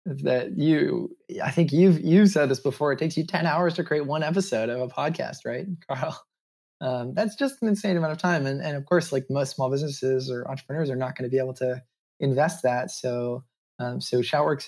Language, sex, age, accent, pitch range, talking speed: English, male, 20-39, American, 125-155 Hz, 220 wpm